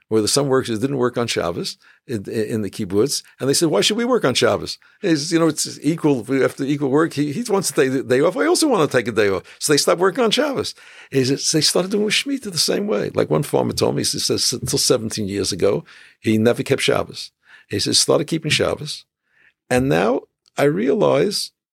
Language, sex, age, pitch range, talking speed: English, male, 60-79, 95-140 Hz, 245 wpm